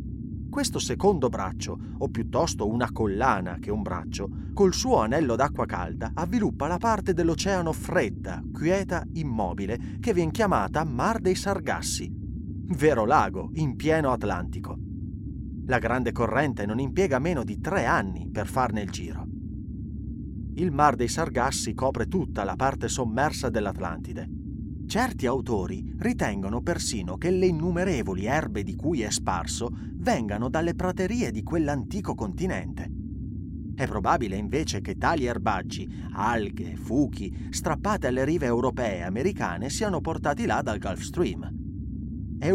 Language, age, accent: Italian, 30-49, native